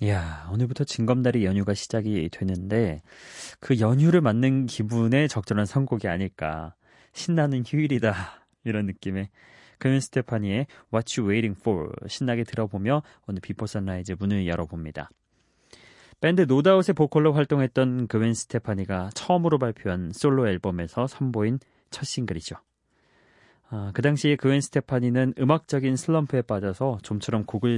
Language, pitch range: Korean, 100-130 Hz